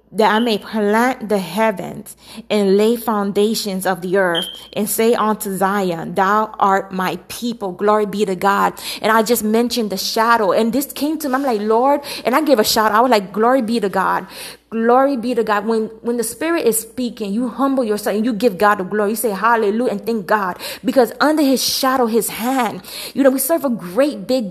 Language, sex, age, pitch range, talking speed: English, female, 20-39, 210-250 Hz, 215 wpm